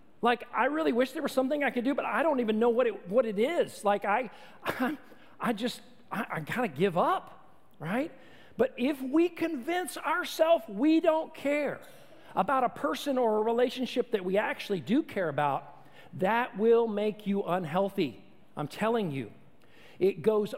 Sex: male